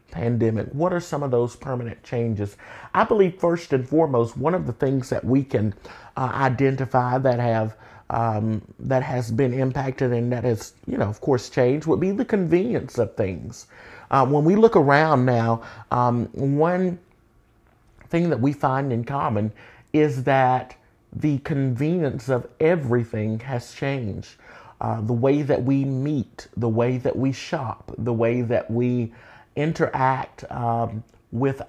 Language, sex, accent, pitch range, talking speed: English, male, American, 115-140 Hz, 155 wpm